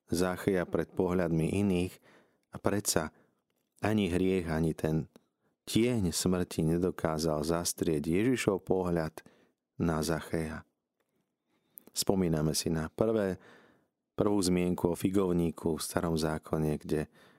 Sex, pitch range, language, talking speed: male, 80-90 Hz, Slovak, 105 wpm